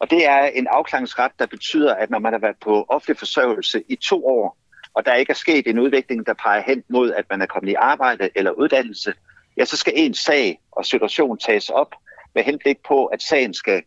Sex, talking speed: male, 225 wpm